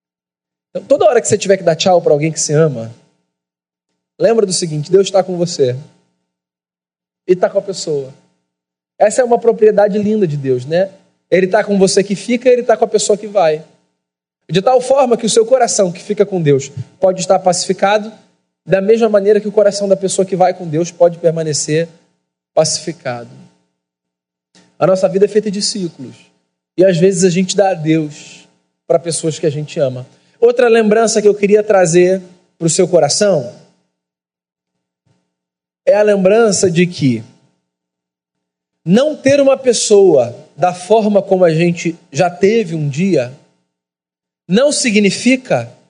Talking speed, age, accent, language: 165 wpm, 20-39, Brazilian, Portuguese